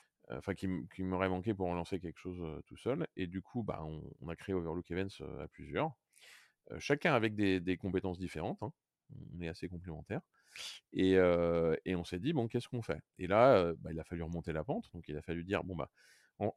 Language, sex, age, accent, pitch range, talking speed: French, male, 40-59, French, 80-110 Hz, 235 wpm